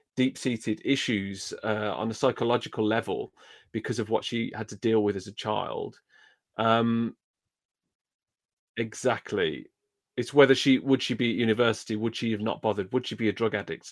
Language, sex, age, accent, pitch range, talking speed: English, male, 30-49, British, 110-125 Hz, 170 wpm